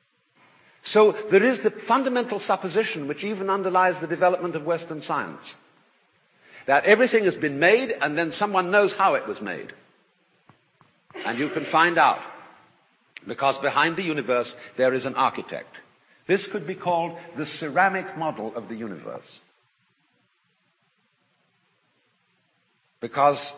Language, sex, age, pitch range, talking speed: English, male, 60-79, 140-190 Hz, 130 wpm